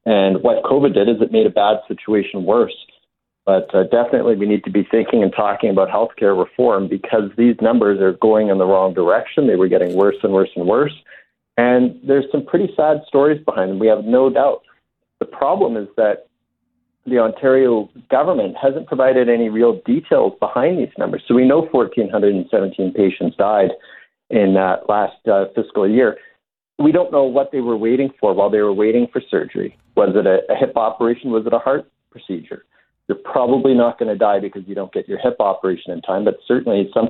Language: English